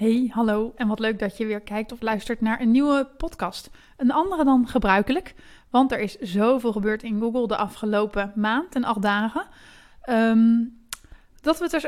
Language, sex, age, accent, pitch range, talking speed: Dutch, female, 20-39, Dutch, 215-265 Hz, 185 wpm